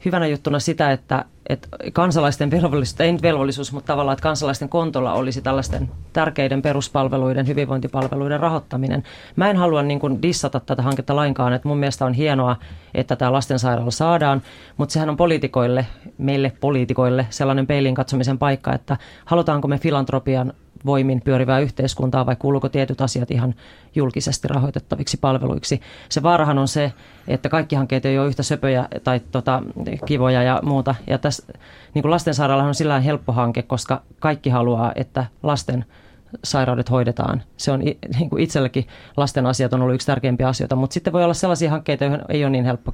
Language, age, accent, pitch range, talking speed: Finnish, 30-49, native, 130-145 Hz, 160 wpm